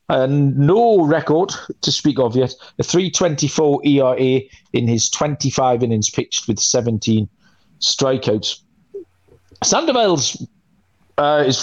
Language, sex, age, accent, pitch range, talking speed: English, male, 40-59, British, 120-160 Hz, 105 wpm